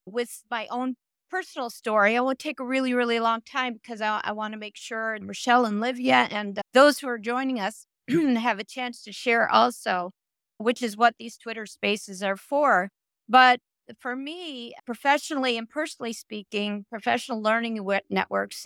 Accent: American